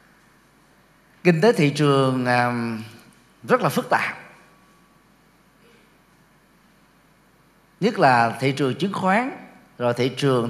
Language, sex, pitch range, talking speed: Vietnamese, male, 125-165 Hz, 95 wpm